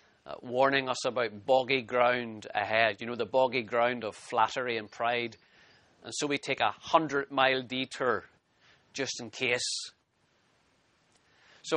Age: 40-59